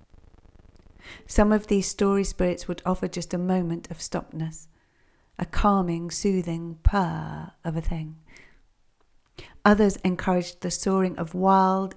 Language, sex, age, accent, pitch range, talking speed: English, female, 40-59, British, 165-200 Hz, 125 wpm